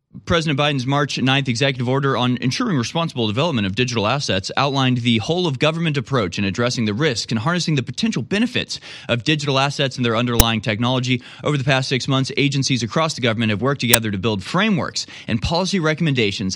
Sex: male